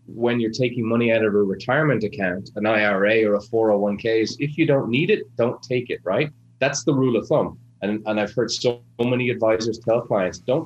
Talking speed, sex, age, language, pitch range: 220 wpm, male, 30-49, English, 110-130 Hz